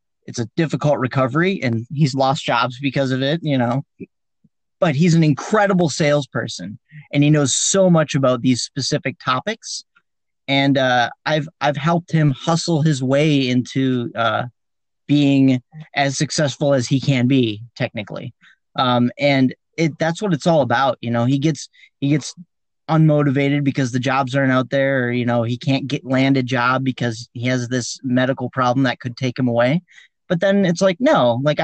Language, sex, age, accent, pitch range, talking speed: English, male, 30-49, American, 125-155 Hz, 175 wpm